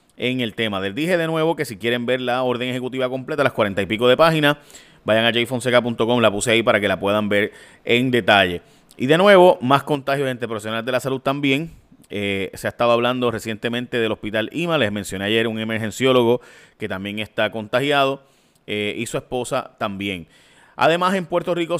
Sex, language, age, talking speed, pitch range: male, Spanish, 30-49, 200 wpm, 110-140 Hz